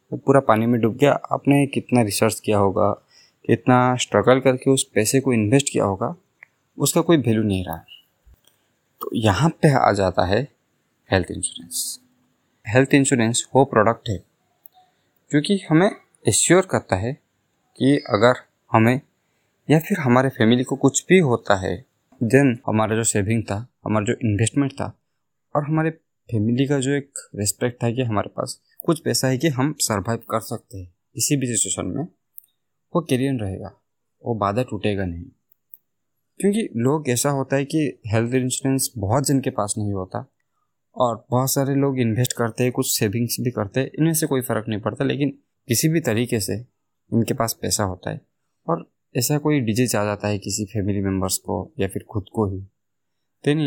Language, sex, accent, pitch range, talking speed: Hindi, male, native, 105-135 Hz, 175 wpm